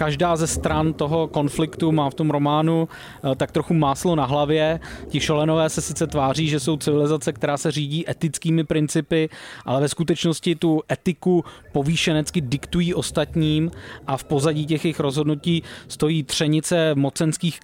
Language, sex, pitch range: Czech, male, 145-165 Hz